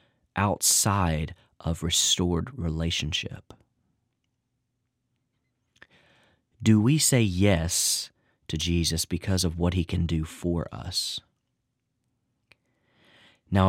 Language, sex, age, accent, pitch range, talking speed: English, male, 40-59, American, 90-120 Hz, 85 wpm